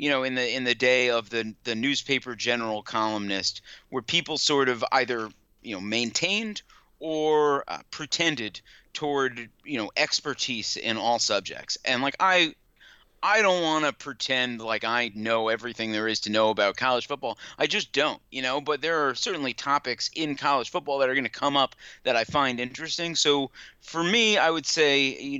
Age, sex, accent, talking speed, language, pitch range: 30-49, male, American, 190 wpm, English, 115-145 Hz